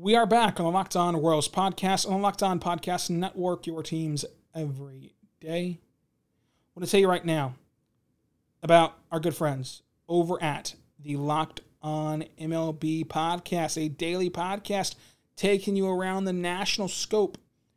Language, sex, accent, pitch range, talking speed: English, male, American, 155-180 Hz, 155 wpm